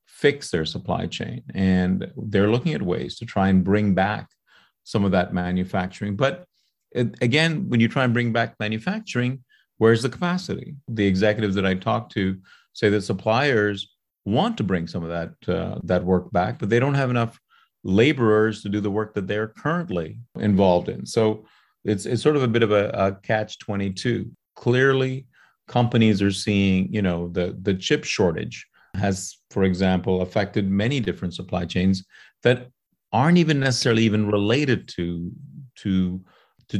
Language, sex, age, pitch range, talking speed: English, male, 40-59, 95-120 Hz, 170 wpm